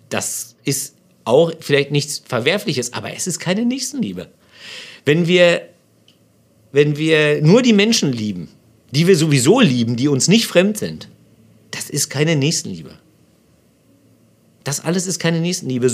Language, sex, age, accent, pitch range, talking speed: German, male, 50-69, German, 120-165 Hz, 135 wpm